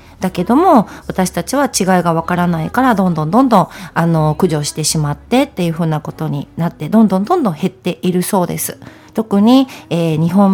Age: 40-59